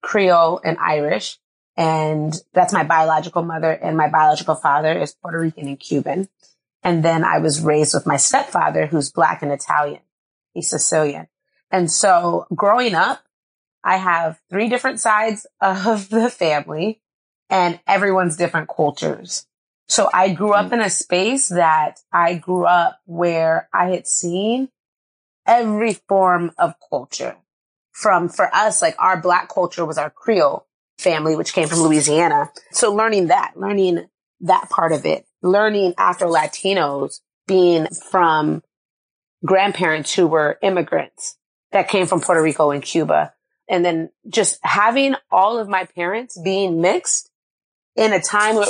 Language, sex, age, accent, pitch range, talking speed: English, female, 30-49, American, 160-205 Hz, 145 wpm